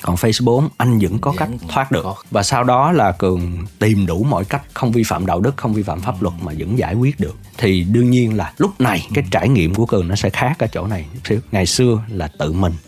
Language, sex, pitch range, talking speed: Vietnamese, male, 85-120 Hz, 250 wpm